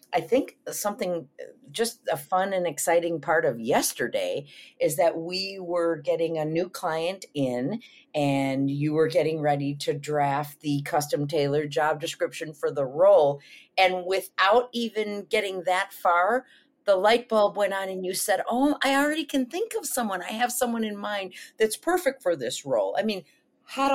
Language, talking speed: English, 175 wpm